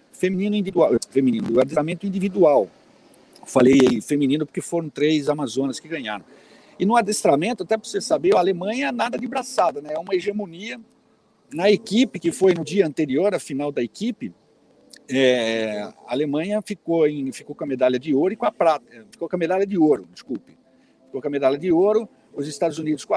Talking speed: 180 wpm